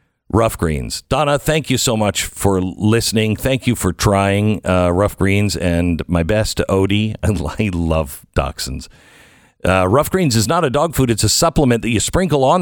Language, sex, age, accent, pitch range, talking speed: English, male, 50-69, American, 100-140 Hz, 185 wpm